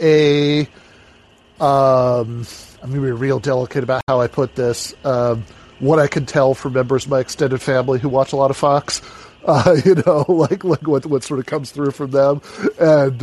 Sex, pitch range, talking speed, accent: male, 120-140 Hz, 195 wpm, American